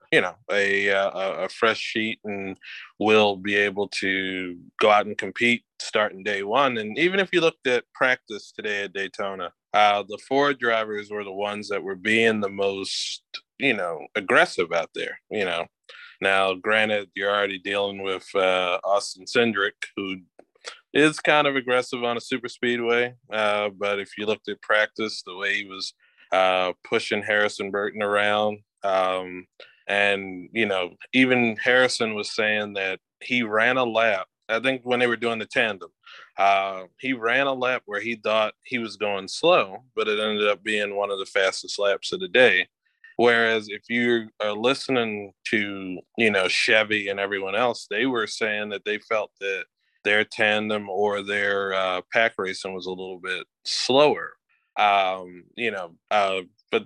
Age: 20-39